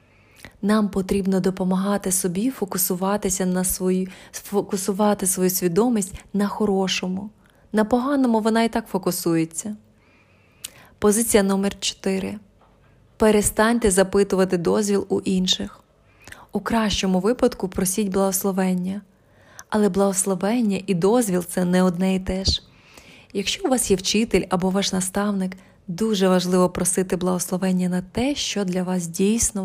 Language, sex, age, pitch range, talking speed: Ukrainian, female, 20-39, 185-215 Hz, 115 wpm